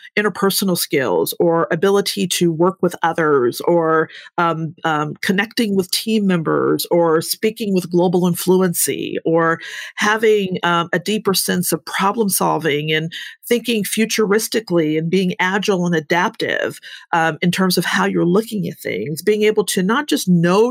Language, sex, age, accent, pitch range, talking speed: English, female, 40-59, American, 170-220 Hz, 150 wpm